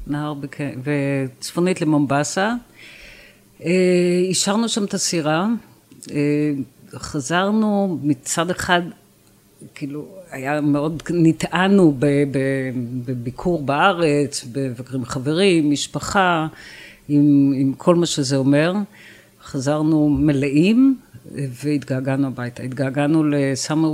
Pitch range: 135-165 Hz